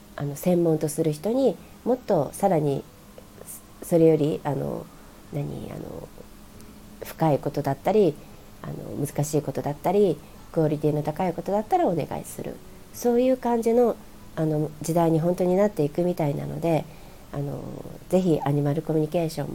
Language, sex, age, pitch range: Japanese, female, 40-59, 155-200 Hz